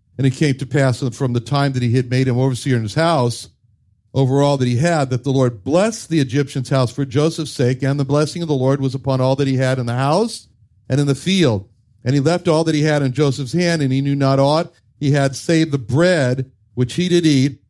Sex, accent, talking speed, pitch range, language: male, American, 255 wpm, 130-170 Hz, English